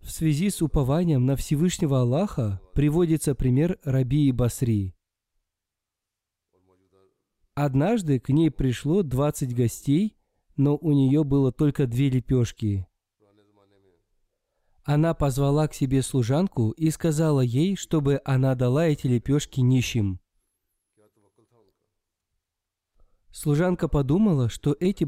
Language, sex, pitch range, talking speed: Russian, male, 105-150 Hz, 100 wpm